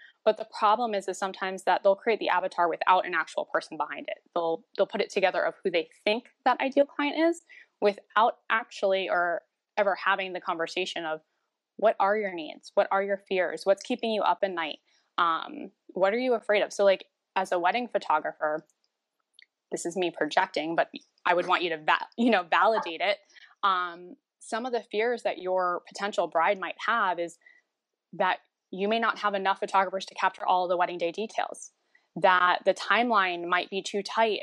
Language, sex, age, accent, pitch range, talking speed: English, female, 10-29, American, 180-225 Hz, 195 wpm